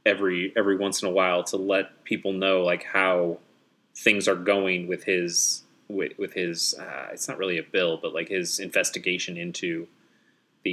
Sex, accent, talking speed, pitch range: male, American, 180 wpm, 95-145 Hz